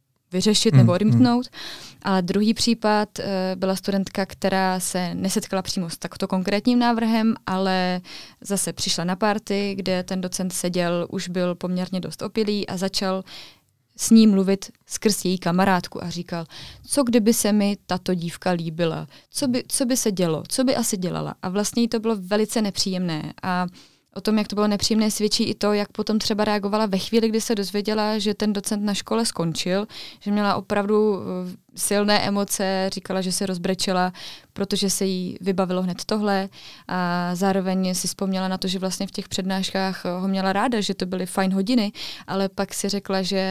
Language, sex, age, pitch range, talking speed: Czech, female, 20-39, 185-210 Hz, 175 wpm